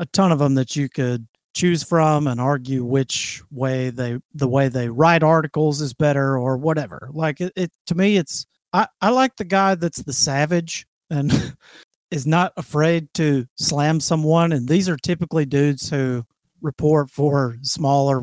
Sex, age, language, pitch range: male, 40-59, English, 135-170 Hz